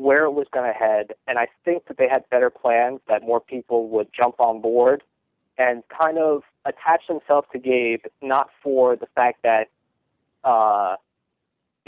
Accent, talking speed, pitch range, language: American, 170 wpm, 120-150 Hz, English